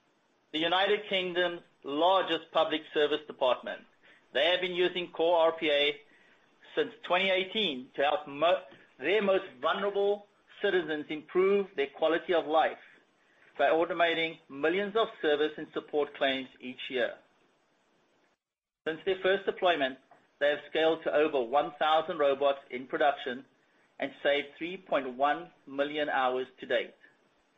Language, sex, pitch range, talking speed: English, male, 150-185 Hz, 120 wpm